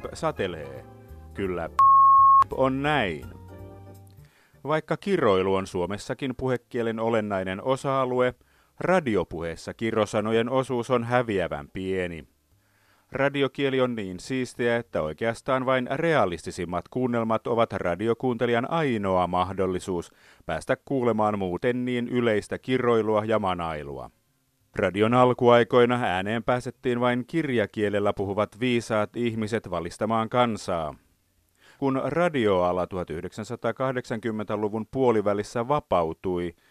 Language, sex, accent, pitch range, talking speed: Finnish, male, native, 95-125 Hz, 90 wpm